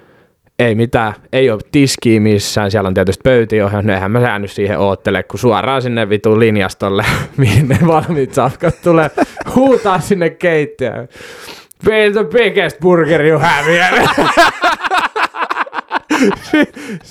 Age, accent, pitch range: 20-39, native, 105-155 Hz